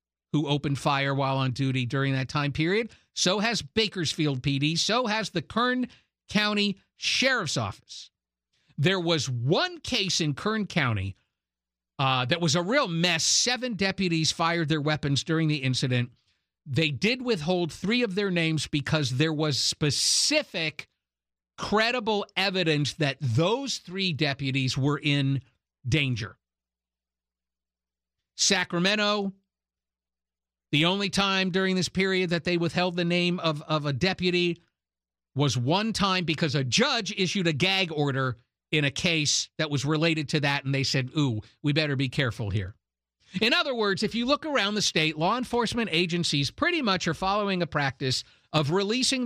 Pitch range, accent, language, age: 135-200 Hz, American, English, 50-69